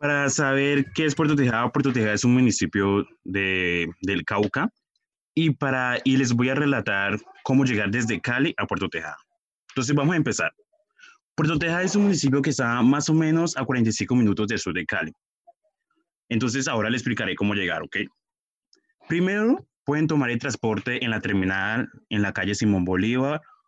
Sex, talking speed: male, 175 wpm